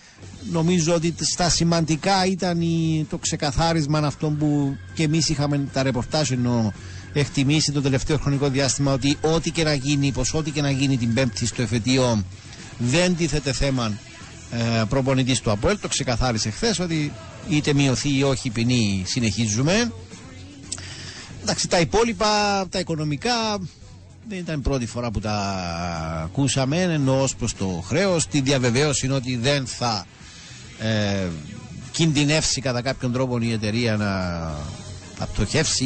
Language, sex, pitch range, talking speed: Greek, male, 110-155 Hz, 135 wpm